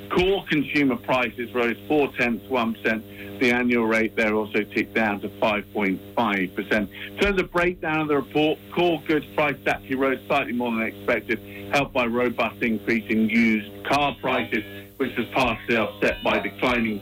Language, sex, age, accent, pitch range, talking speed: English, male, 50-69, British, 105-140 Hz, 175 wpm